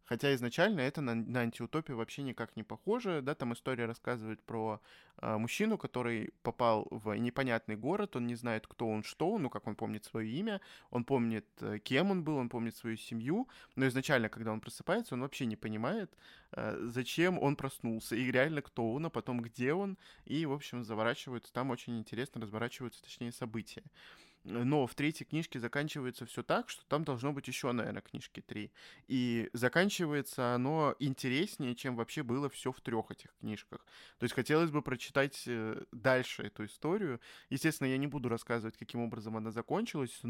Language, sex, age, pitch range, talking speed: Russian, male, 20-39, 115-140 Hz, 175 wpm